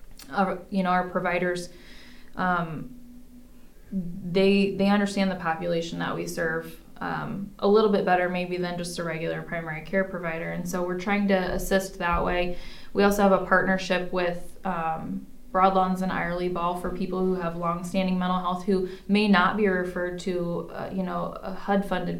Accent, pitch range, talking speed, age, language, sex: American, 175-195 Hz, 175 wpm, 20-39, English, female